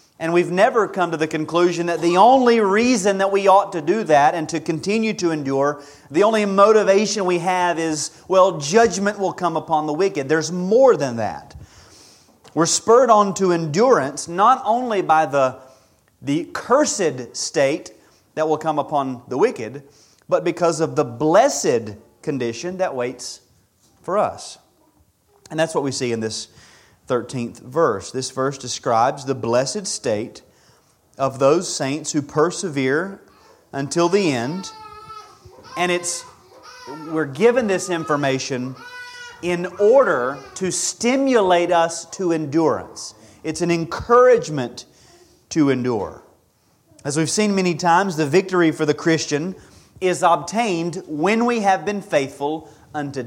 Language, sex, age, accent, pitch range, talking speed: English, male, 30-49, American, 140-190 Hz, 140 wpm